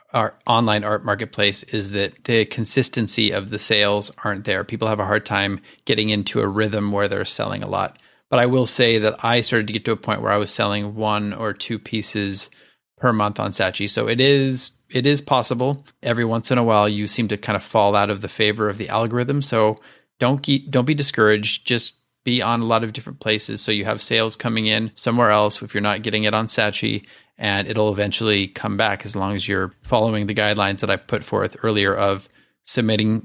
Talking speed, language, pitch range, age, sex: 220 wpm, English, 105-120 Hz, 30-49, male